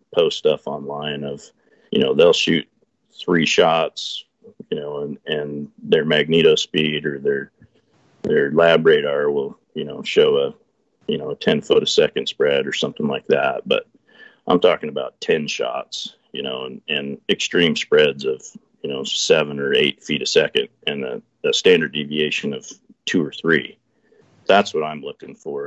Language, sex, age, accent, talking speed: English, male, 40-59, American, 175 wpm